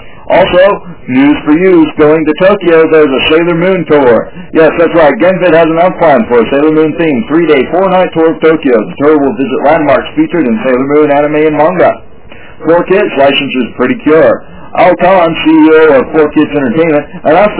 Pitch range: 145-170 Hz